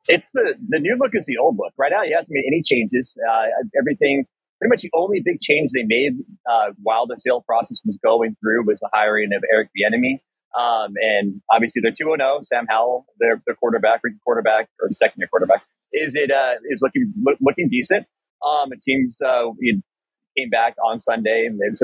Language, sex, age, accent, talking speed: English, male, 30-49, American, 210 wpm